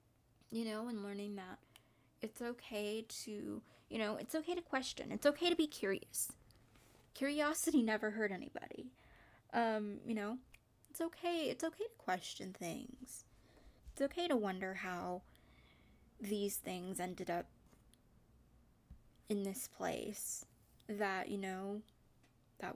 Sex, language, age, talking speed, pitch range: female, English, 20-39, 130 wpm, 185-255 Hz